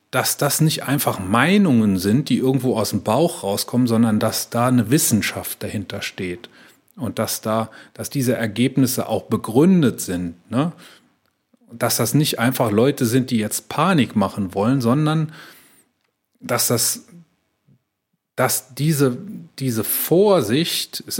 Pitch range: 115-135 Hz